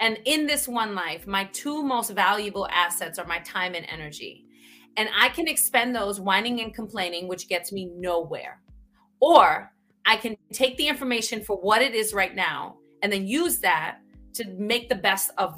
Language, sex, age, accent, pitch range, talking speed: English, female, 30-49, American, 195-260 Hz, 185 wpm